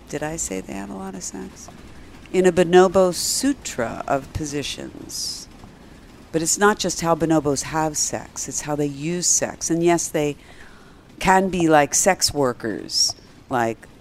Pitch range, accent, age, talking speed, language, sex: 120-160 Hz, American, 50-69, 160 wpm, English, female